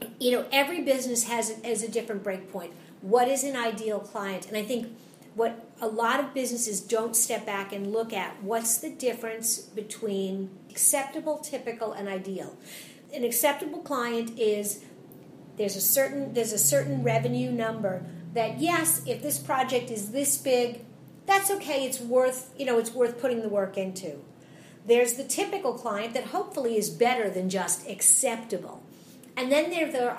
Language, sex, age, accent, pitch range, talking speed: English, female, 50-69, American, 210-260 Hz, 165 wpm